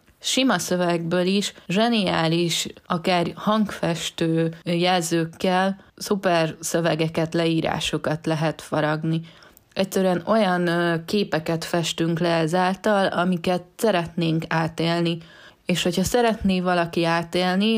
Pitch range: 160-185 Hz